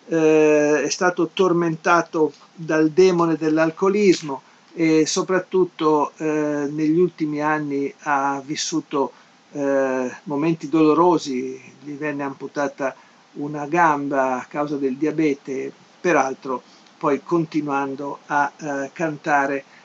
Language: Italian